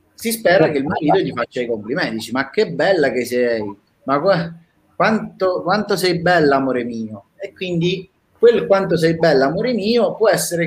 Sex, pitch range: male, 120-170 Hz